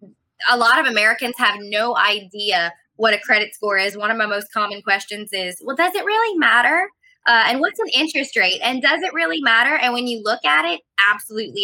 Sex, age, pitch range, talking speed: female, 20-39, 195-240 Hz, 215 wpm